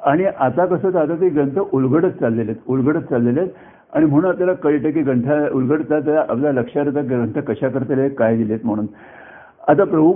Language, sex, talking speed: Marathi, male, 175 wpm